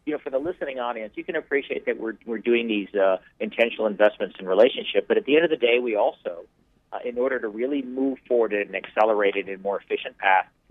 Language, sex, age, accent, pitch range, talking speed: English, male, 50-69, American, 110-175 Hz, 250 wpm